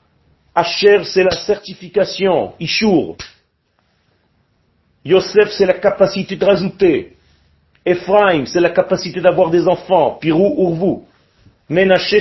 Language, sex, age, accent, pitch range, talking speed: French, male, 40-59, French, 155-190 Hz, 105 wpm